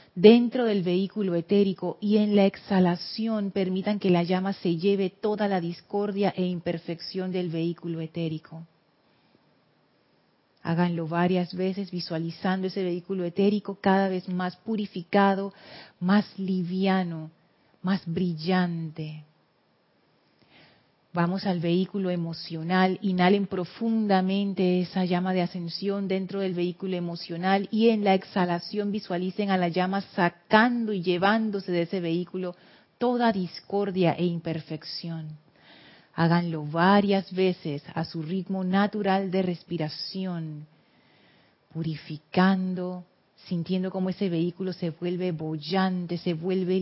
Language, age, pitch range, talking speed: Spanish, 40-59, 170-195 Hz, 115 wpm